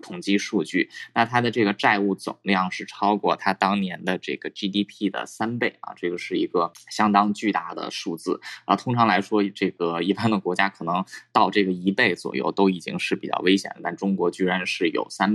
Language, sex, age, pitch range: Chinese, male, 20-39, 95-115 Hz